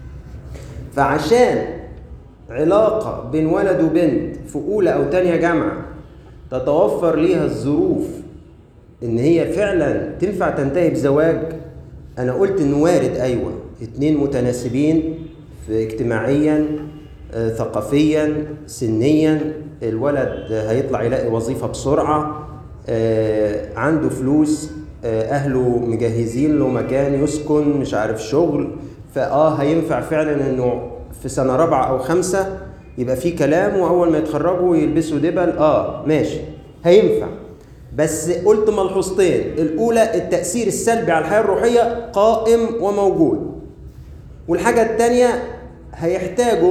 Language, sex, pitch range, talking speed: Arabic, male, 140-215 Hz, 100 wpm